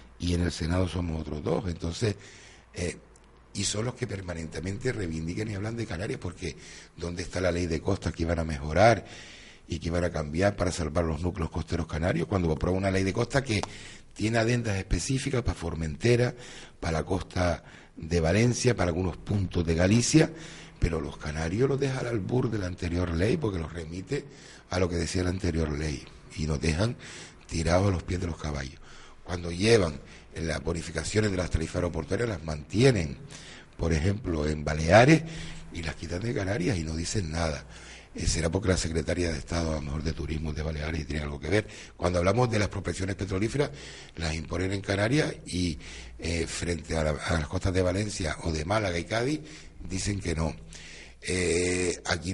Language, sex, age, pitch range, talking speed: Spanish, male, 60-79, 80-100 Hz, 190 wpm